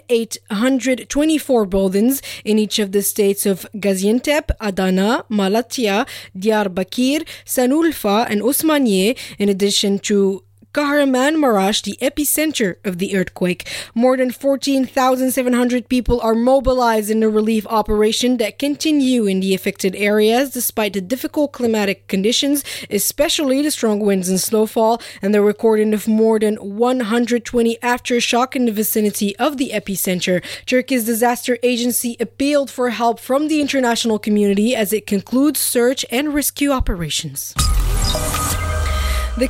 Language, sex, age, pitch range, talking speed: French, female, 20-39, 205-255 Hz, 130 wpm